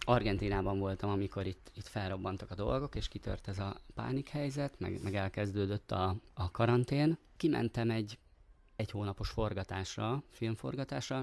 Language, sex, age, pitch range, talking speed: Hungarian, male, 30-49, 100-115 Hz, 135 wpm